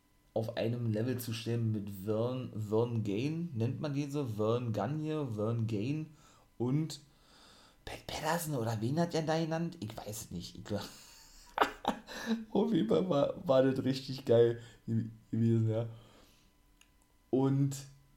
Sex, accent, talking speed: male, German, 140 wpm